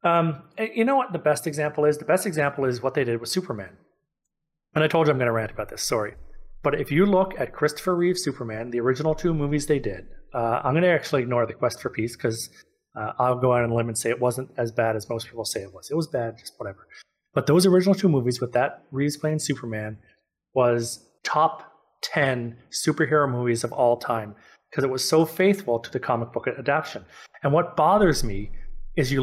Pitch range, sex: 125-175 Hz, male